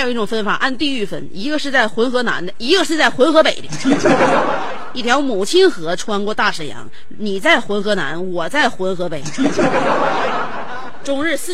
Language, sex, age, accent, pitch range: Chinese, female, 30-49, native, 180-260 Hz